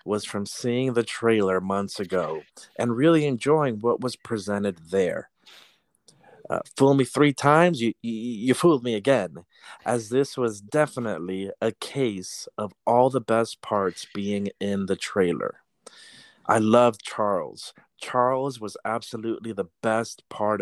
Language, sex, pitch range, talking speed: English, male, 100-130 Hz, 145 wpm